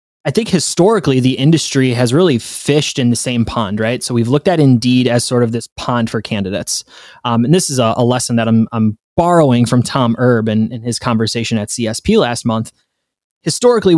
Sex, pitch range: male, 115-140 Hz